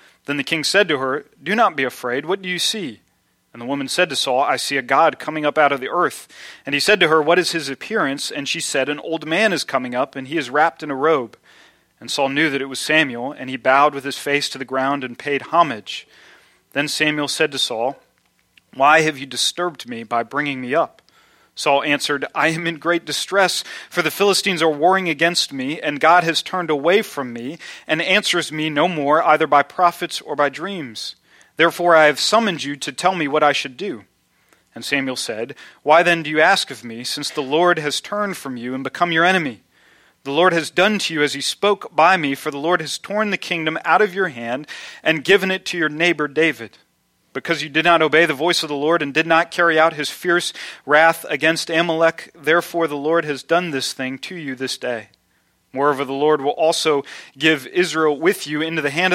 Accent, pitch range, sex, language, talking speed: American, 140-170 Hz, male, English, 230 wpm